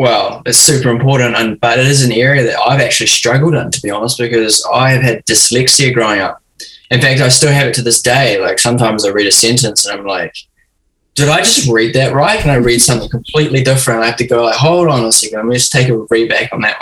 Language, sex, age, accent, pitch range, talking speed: English, male, 10-29, Australian, 110-130 Hz, 260 wpm